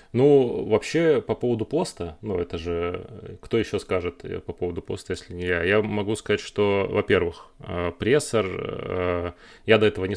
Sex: male